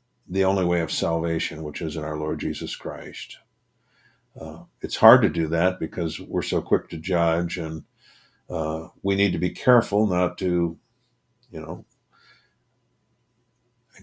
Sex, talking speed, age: male, 155 wpm, 50-69